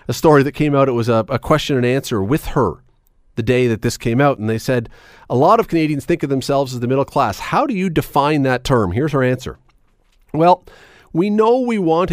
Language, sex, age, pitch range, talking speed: English, male, 40-59, 125-160 Hz, 235 wpm